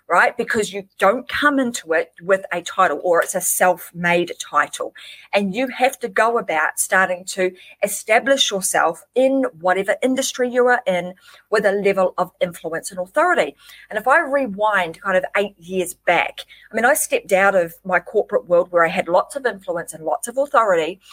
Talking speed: 185 wpm